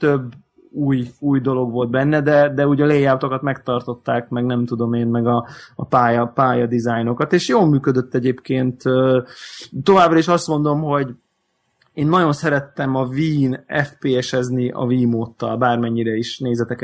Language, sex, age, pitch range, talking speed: Hungarian, male, 20-39, 125-145 Hz, 145 wpm